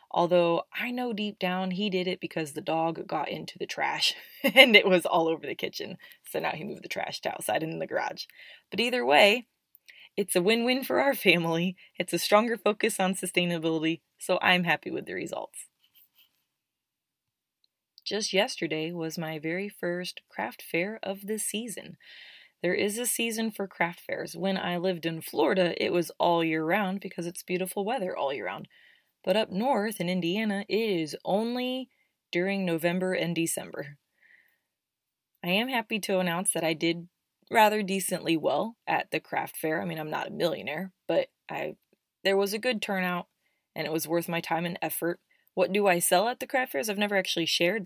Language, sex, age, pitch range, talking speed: English, female, 20-39, 165-205 Hz, 190 wpm